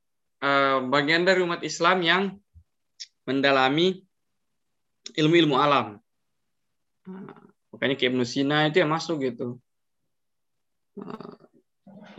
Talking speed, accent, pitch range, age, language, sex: 95 wpm, native, 130-165 Hz, 20-39, Indonesian, male